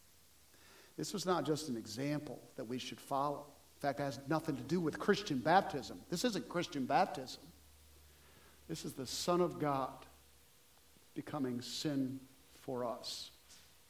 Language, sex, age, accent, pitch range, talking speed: English, male, 50-69, American, 150-200 Hz, 145 wpm